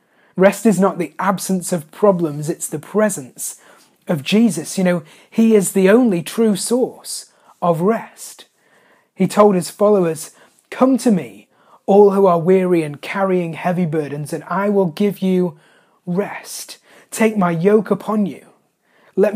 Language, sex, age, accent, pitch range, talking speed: English, male, 30-49, British, 175-220 Hz, 150 wpm